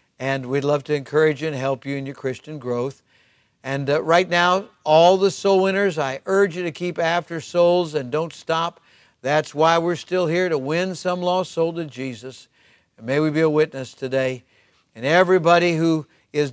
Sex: male